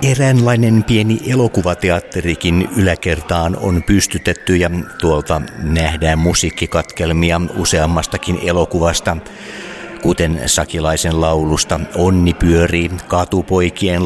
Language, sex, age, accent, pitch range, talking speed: Finnish, male, 50-69, native, 80-95 Hz, 75 wpm